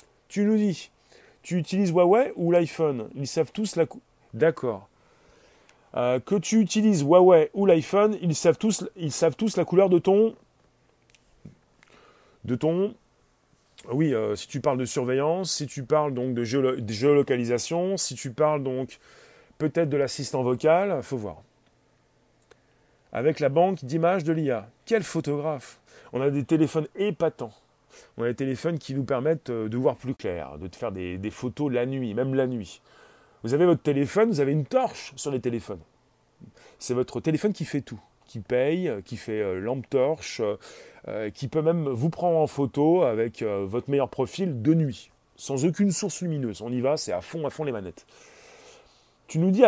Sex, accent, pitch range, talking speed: male, French, 125-180 Hz, 175 wpm